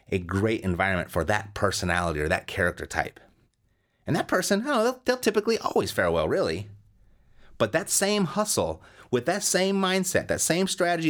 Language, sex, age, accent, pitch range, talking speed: English, male, 30-49, American, 95-140 Hz, 185 wpm